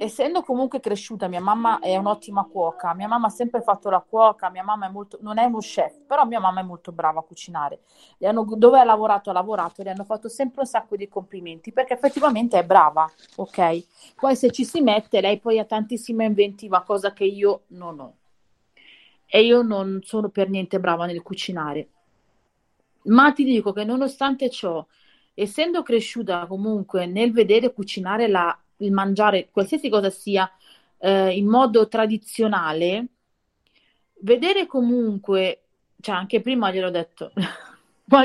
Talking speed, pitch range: 165 wpm, 190-245 Hz